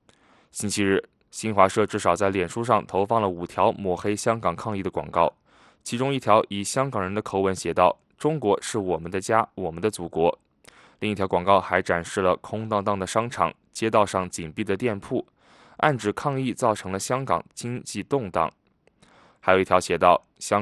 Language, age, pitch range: English, 20-39, 95-115 Hz